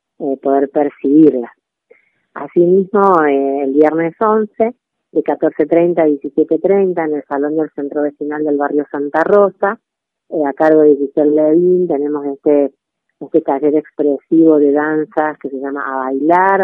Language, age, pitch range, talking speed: Spanish, 30-49, 140-165 Hz, 145 wpm